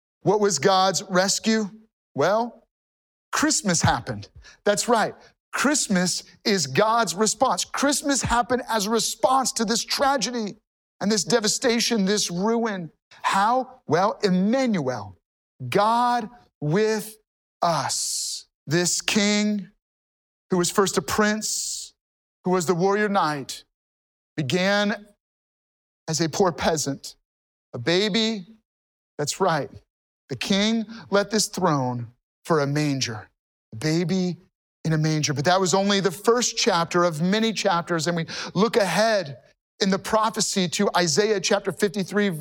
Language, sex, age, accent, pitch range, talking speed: English, male, 40-59, American, 175-225 Hz, 125 wpm